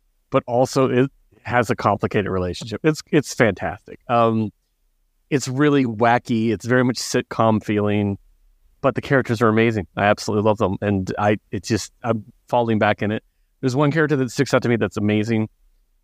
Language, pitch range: English, 100-135 Hz